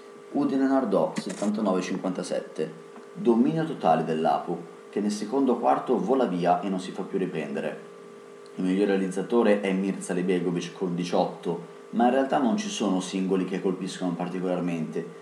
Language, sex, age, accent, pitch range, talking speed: Italian, male, 30-49, native, 90-135 Hz, 140 wpm